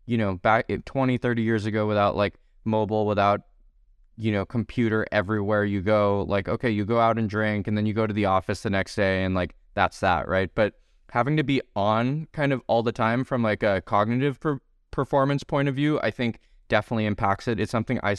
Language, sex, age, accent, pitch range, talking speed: English, male, 20-39, American, 100-115 Hz, 220 wpm